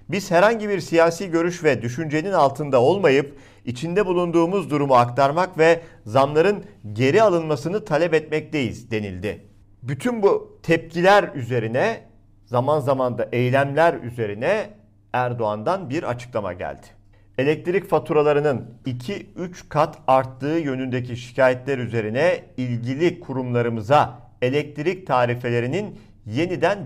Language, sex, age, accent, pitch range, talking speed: Turkish, male, 50-69, native, 110-155 Hz, 105 wpm